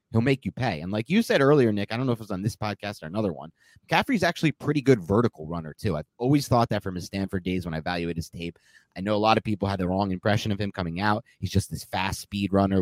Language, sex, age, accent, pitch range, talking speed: English, male, 30-49, American, 95-125 Hz, 295 wpm